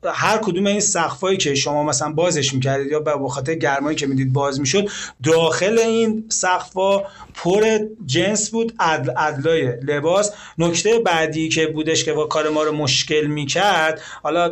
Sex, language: male, Persian